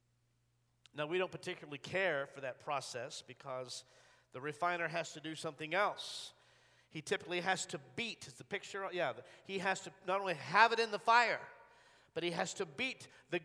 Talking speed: 185 wpm